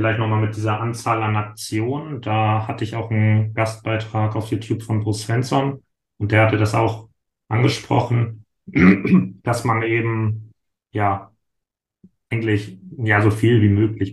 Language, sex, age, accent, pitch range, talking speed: German, male, 30-49, German, 105-115 Hz, 140 wpm